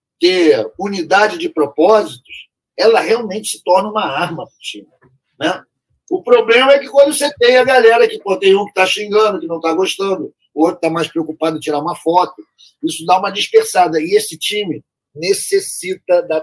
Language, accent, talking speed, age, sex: Portuguese, Brazilian, 190 wpm, 40-59, male